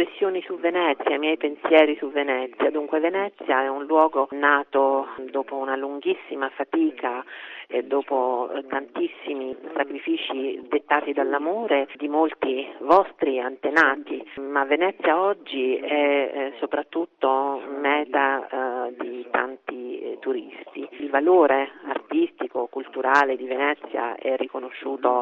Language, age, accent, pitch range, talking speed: Italian, 40-59, native, 135-160 Hz, 110 wpm